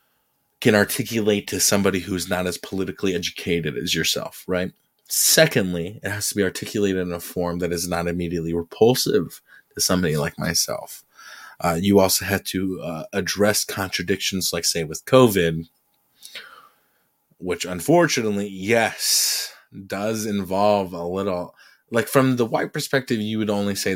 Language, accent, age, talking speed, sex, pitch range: English, American, 20-39, 145 wpm, male, 90-120 Hz